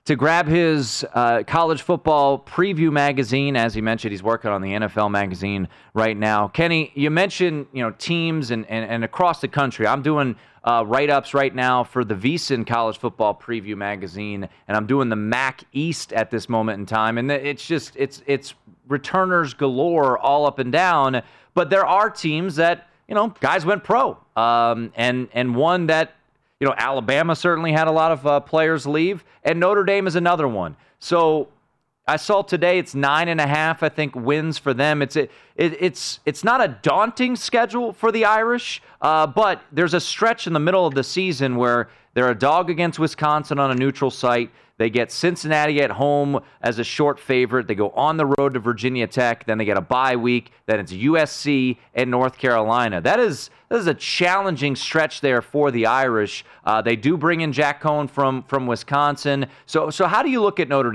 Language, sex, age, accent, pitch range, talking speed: English, male, 30-49, American, 120-165 Hz, 200 wpm